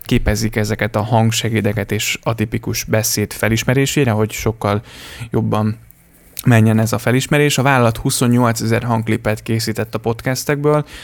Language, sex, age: Hungarian, male, 20-39